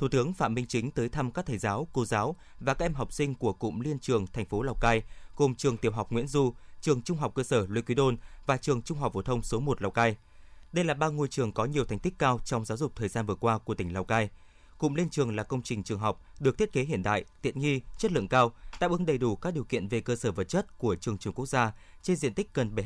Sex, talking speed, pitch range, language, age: male, 290 wpm, 110-145 Hz, Vietnamese, 20-39